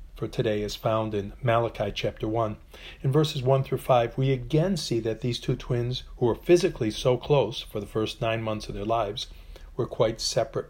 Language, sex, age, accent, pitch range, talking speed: English, male, 40-59, American, 100-130 Hz, 200 wpm